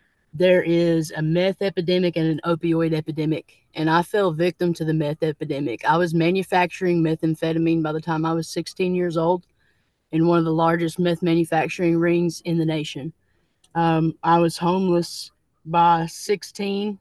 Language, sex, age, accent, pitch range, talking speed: English, female, 20-39, American, 165-185 Hz, 160 wpm